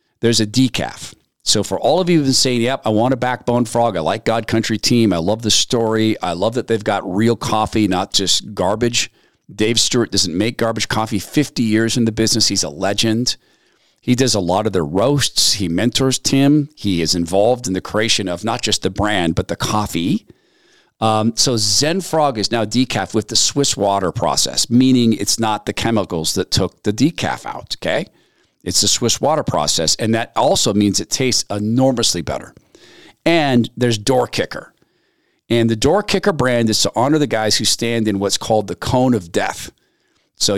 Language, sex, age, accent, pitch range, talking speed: English, male, 40-59, American, 100-125 Hz, 200 wpm